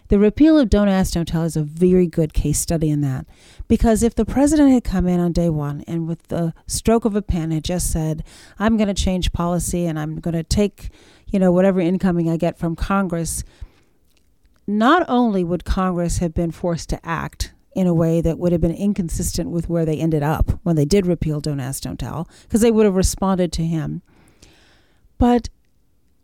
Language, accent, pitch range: English, American, 170-225 Hz